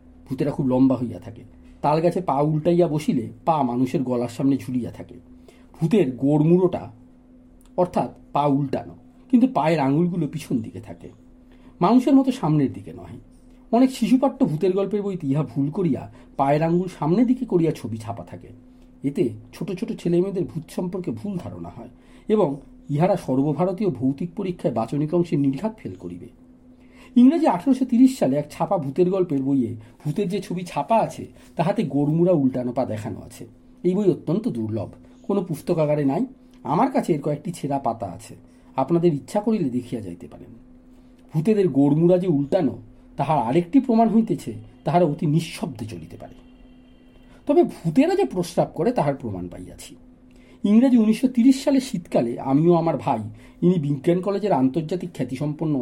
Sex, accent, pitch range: male, native, 125-195 Hz